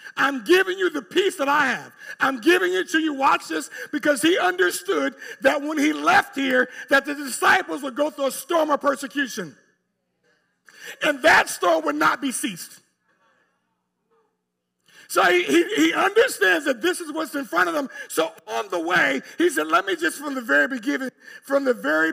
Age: 50-69